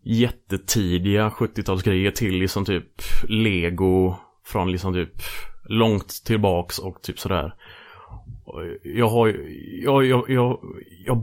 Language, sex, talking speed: Swedish, male, 110 wpm